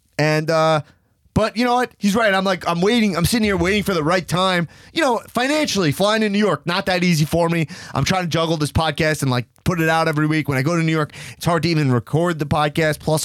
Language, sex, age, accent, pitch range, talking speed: English, male, 20-39, American, 125-185 Hz, 265 wpm